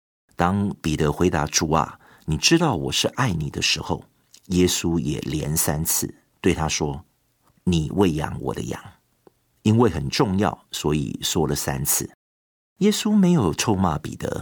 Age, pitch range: 50-69, 75-100 Hz